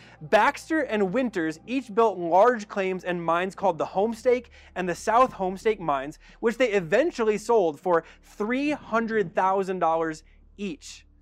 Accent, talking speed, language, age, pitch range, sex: American, 130 wpm, English, 20-39, 175-235 Hz, male